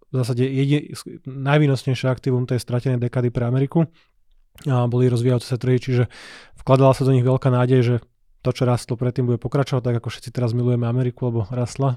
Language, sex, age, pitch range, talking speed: Slovak, male, 20-39, 120-130 Hz, 190 wpm